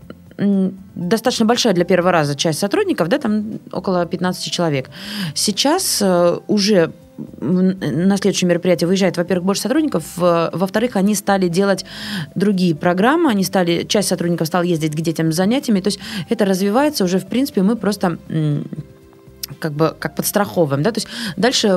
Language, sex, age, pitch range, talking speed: Russian, female, 20-39, 165-200 Hz, 150 wpm